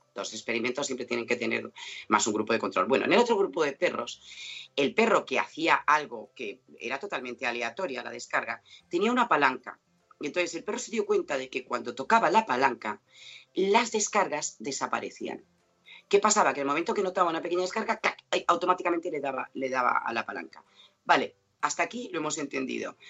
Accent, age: Spanish, 30-49